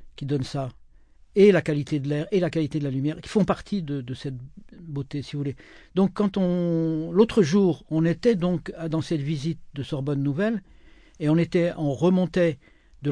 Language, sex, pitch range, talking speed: French, male, 150-190 Hz, 190 wpm